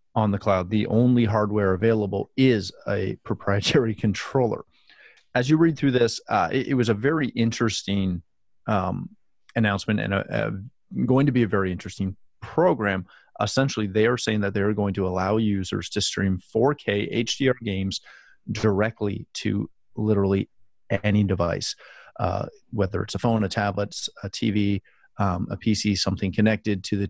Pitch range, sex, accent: 100-120 Hz, male, American